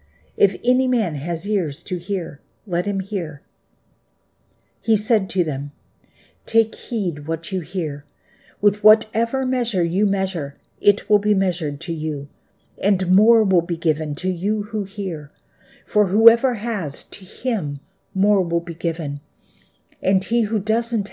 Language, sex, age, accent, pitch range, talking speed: English, female, 60-79, American, 165-215 Hz, 150 wpm